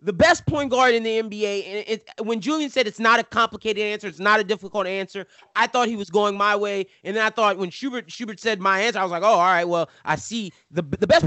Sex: male